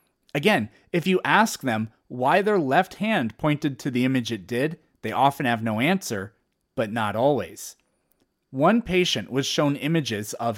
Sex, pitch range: male, 130-185 Hz